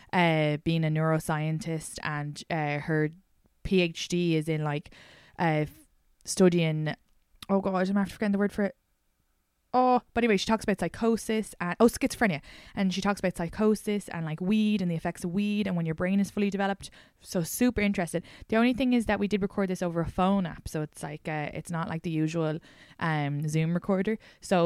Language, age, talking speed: English, 20-39, 195 wpm